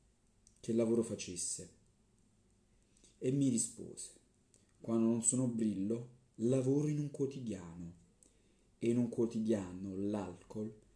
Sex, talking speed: male, 105 wpm